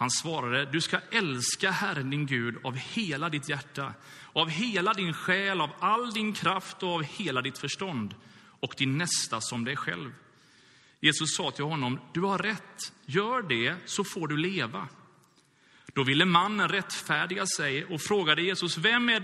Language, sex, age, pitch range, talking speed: Swedish, male, 30-49, 135-195 Hz, 170 wpm